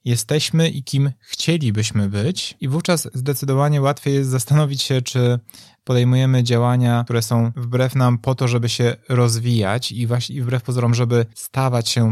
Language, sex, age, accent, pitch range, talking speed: Polish, male, 20-39, native, 115-130 Hz, 155 wpm